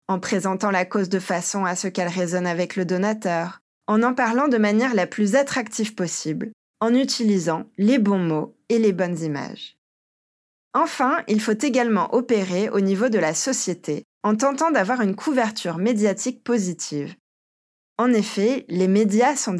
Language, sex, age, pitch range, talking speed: French, female, 20-39, 170-235 Hz, 160 wpm